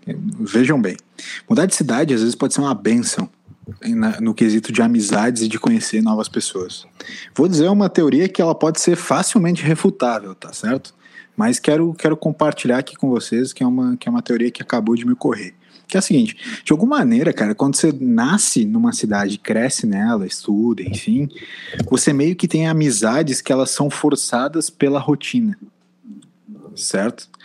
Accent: Brazilian